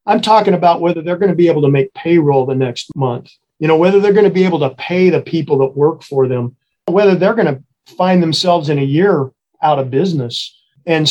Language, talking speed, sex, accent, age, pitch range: English, 240 wpm, male, American, 40-59, 145-175 Hz